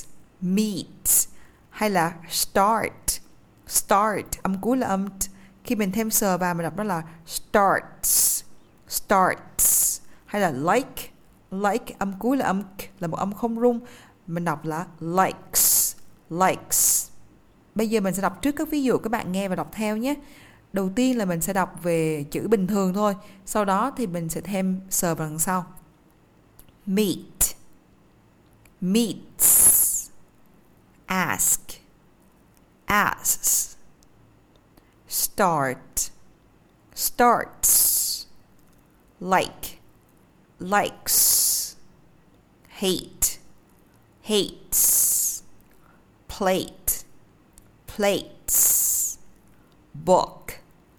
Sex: female